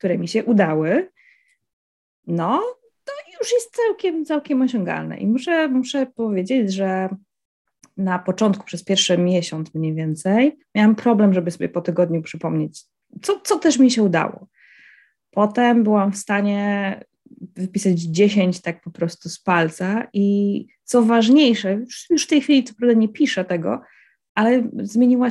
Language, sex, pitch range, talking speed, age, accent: Polish, female, 185-250 Hz, 145 wpm, 20-39, native